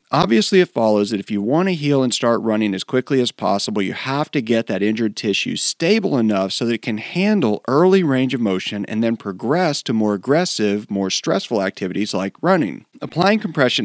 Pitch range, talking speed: 105-145 Hz, 205 wpm